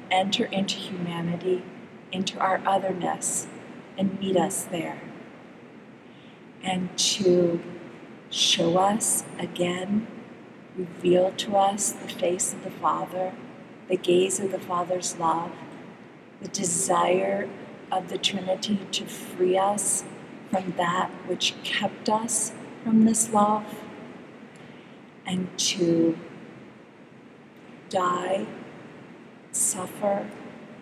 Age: 40-59